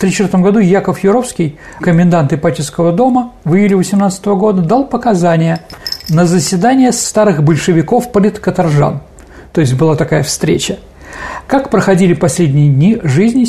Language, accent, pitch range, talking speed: Russian, native, 170-240 Hz, 130 wpm